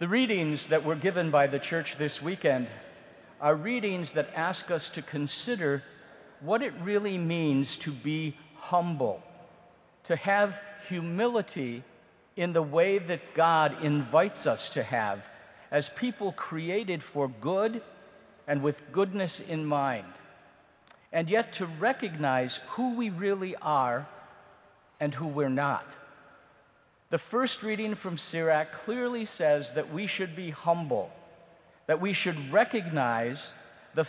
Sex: male